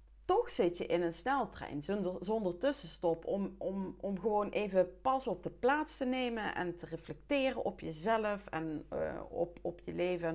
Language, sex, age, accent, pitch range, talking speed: Dutch, female, 40-59, Dutch, 175-240 Hz, 175 wpm